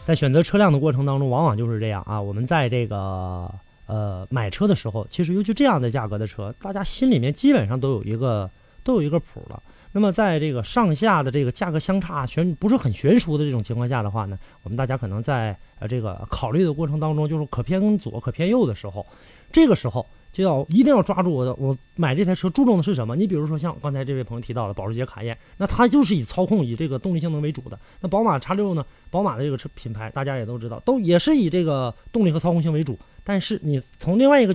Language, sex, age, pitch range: Chinese, male, 30-49, 115-175 Hz